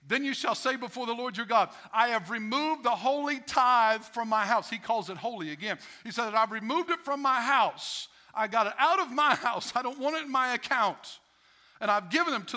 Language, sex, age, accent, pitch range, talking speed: English, male, 50-69, American, 220-265 Hz, 240 wpm